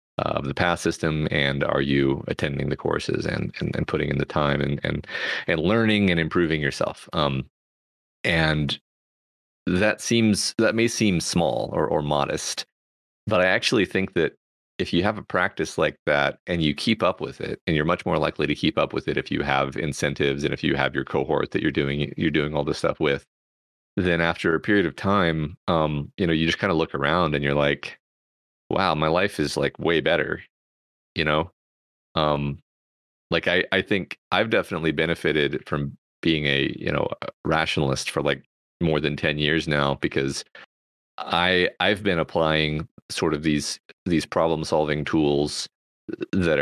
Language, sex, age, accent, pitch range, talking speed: English, male, 30-49, American, 70-85 Hz, 185 wpm